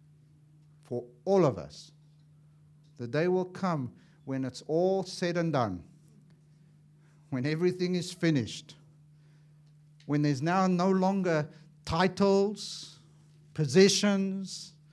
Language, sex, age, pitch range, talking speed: English, male, 50-69, 150-225 Hz, 100 wpm